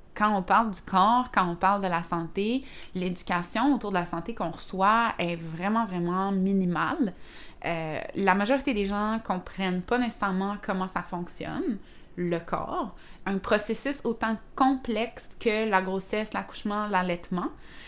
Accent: Canadian